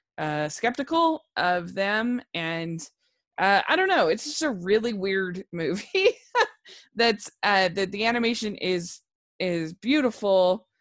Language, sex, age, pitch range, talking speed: English, female, 20-39, 155-200 Hz, 130 wpm